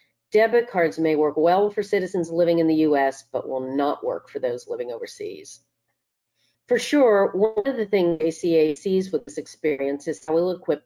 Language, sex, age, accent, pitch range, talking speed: English, female, 50-69, American, 145-195 Hz, 190 wpm